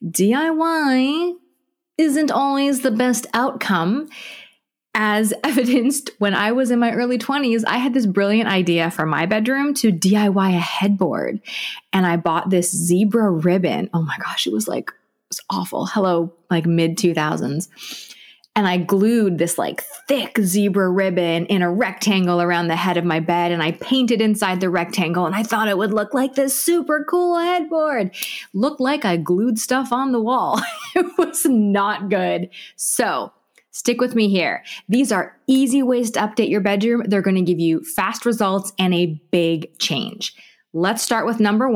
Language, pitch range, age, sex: English, 180-265 Hz, 20-39, female